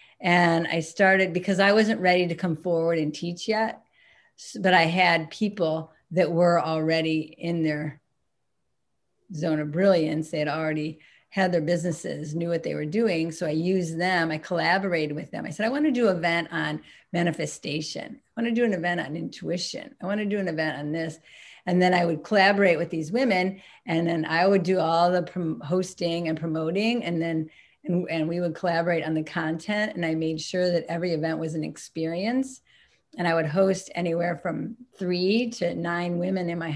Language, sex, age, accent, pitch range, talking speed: English, female, 40-59, American, 160-185 Hz, 195 wpm